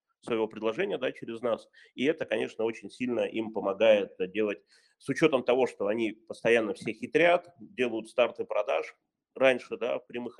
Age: 30-49